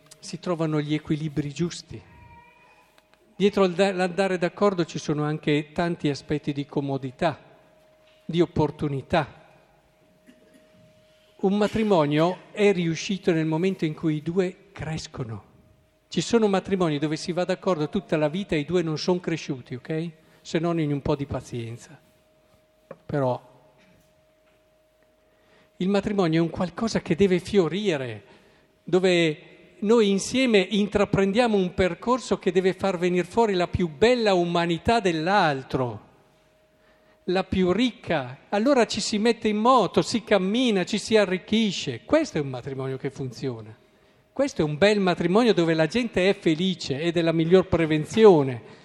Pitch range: 155-200 Hz